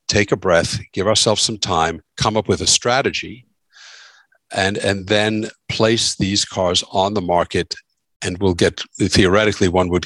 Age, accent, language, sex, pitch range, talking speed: 60-79, American, English, male, 90-130 Hz, 160 wpm